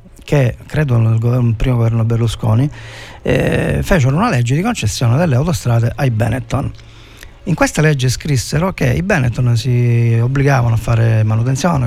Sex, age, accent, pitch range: male, 40-59, native, 120-140 Hz